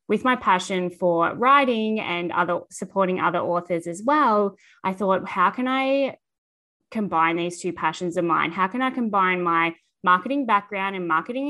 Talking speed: 165 wpm